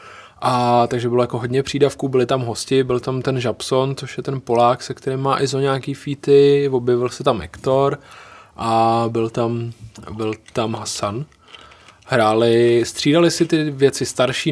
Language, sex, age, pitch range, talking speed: Czech, male, 20-39, 115-135 Hz, 160 wpm